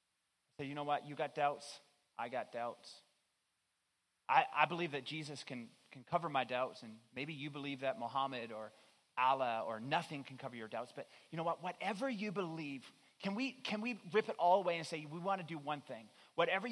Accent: American